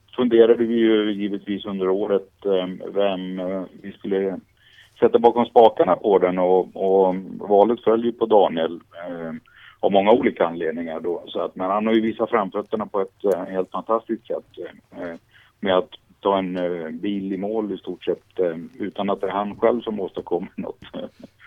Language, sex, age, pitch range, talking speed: Swedish, male, 50-69, 90-115 Hz, 160 wpm